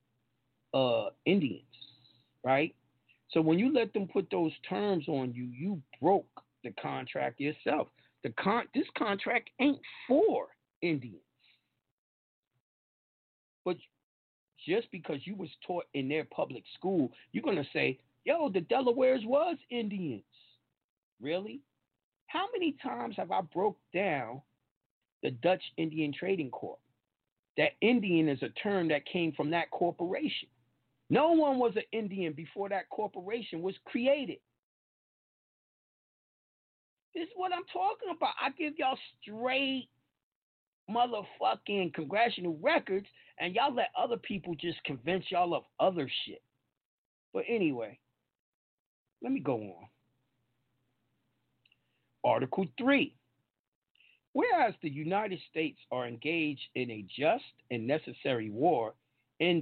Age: 40-59